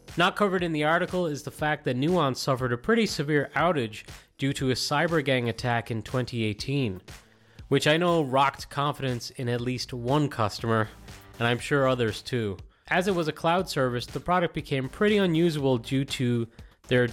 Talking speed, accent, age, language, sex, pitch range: 180 wpm, American, 30-49, English, male, 115-150 Hz